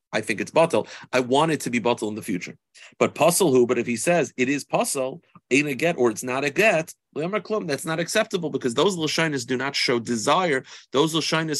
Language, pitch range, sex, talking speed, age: English, 120-160 Hz, male, 220 wpm, 30-49